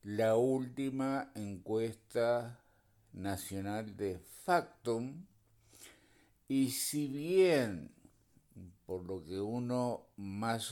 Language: Spanish